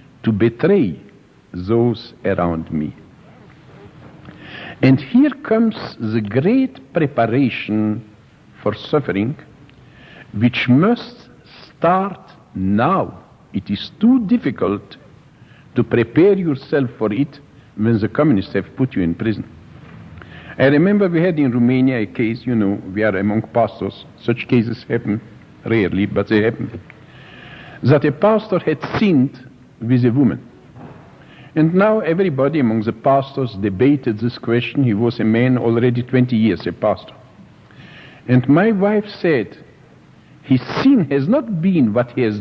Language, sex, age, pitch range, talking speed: English, male, 60-79, 115-155 Hz, 130 wpm